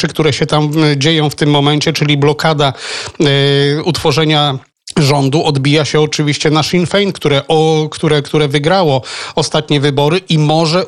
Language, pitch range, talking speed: Polish, 140-165 Hz, 130 wpm